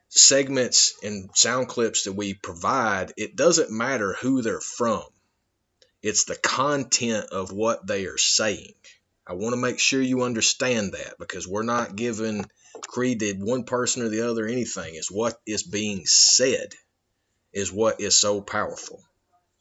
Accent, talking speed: American, 155 wpm